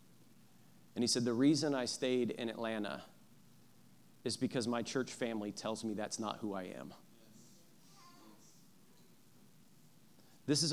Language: English